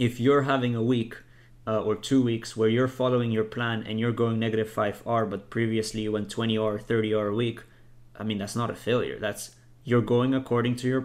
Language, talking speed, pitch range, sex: English, 225 wpm, 110-120 Hz, male